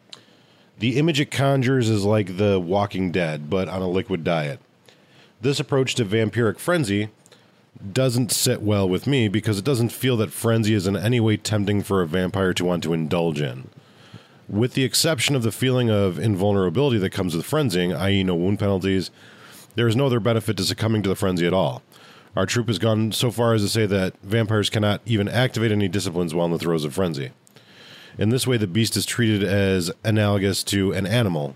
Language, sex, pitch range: English, male, 95-115 Hz